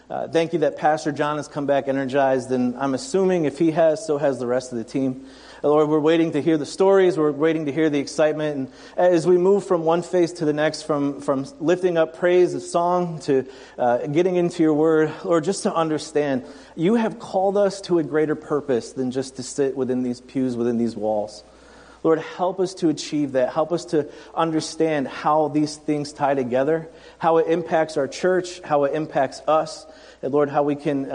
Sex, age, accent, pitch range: male, 40-59, American, 140-170 Hz